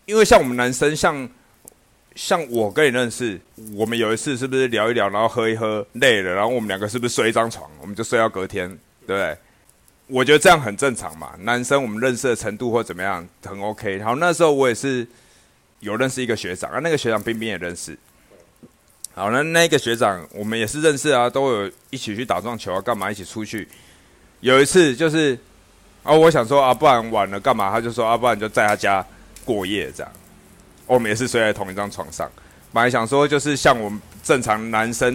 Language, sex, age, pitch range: Chinese, male, 30-49, 105-130 Hz